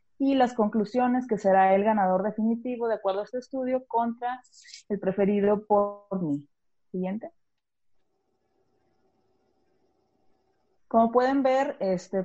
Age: 30-49